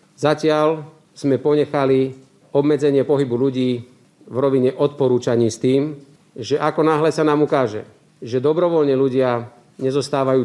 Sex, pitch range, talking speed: male, 125-140 Hz, 120 wpm